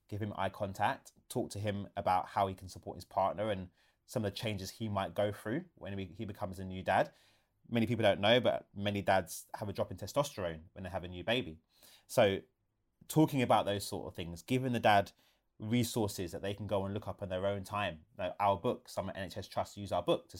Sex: male